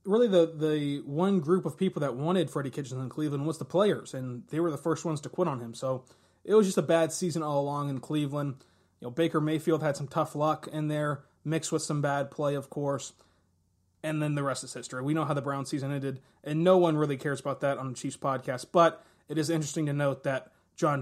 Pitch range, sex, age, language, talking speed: 135-170 Hz, male, 20-39, English, 245 wpm